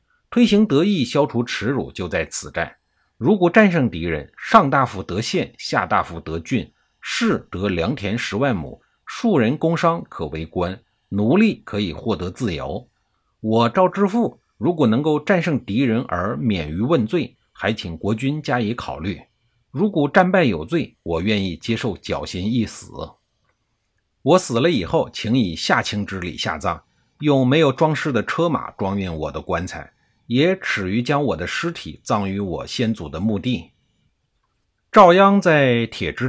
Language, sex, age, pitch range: Chinese, male, 50-69, 100-160 Hz